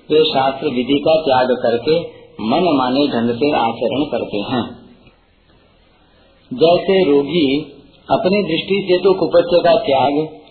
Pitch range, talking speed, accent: 125-170 Hz, 125 wpm, native